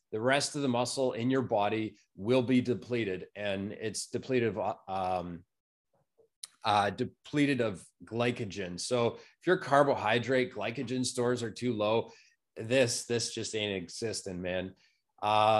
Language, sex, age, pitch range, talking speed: English, male, 30-49, 120-160 Hz, 140 wpm